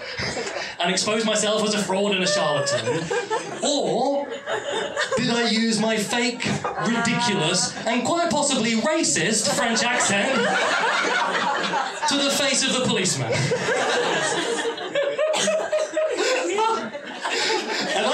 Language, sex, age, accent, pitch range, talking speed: English, male, 20-39, British, 195-270 Hz, 95 wpm